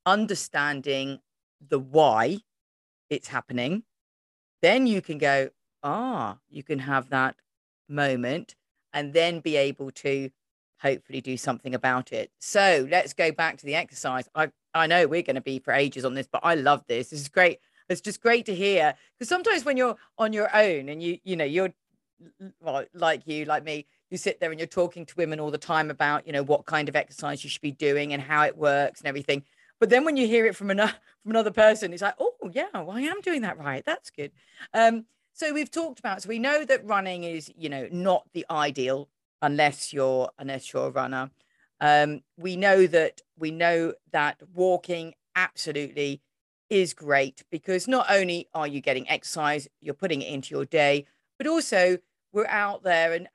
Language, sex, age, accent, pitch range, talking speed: English, female, 40-59, British, 145-195 Hz, 195 wpm